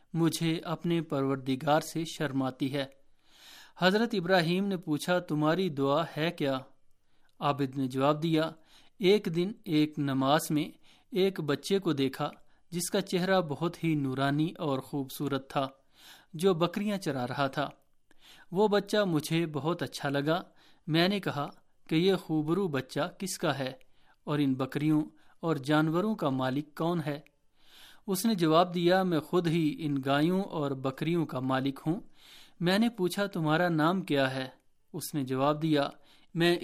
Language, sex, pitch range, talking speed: Urdu, male, 140-175 Hz, 150 wpm